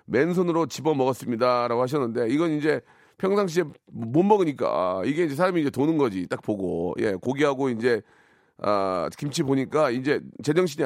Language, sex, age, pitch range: Korean, male, 40-59, 140-190 Hz